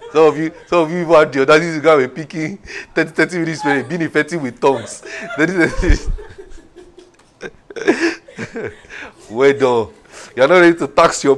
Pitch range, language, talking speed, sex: 135-180 Hz, English, 140 wpm, male